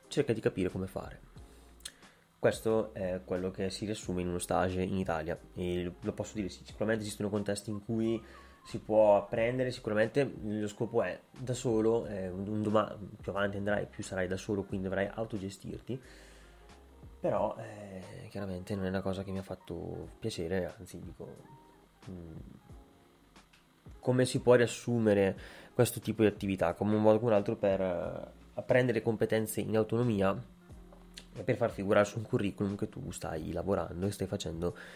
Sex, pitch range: male, 95-120 Hz